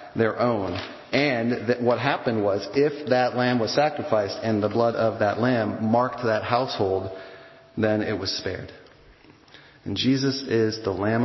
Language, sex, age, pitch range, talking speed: English, male, 40-59, 110-135 Hz, 160 wpm